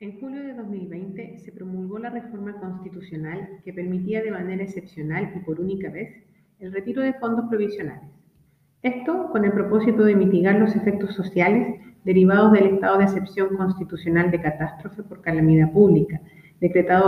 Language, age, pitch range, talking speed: Spanish, 40-59, 175-210 Hz, 155 wpm